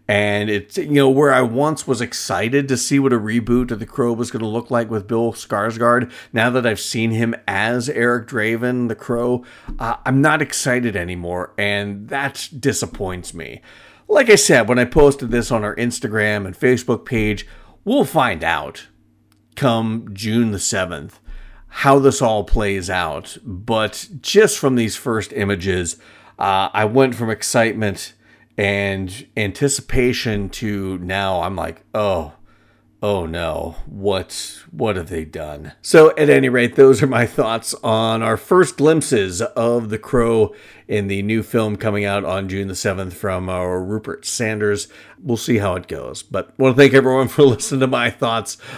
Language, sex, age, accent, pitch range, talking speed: English, male, 40-59, American, 100-120 Hz, 170 wpm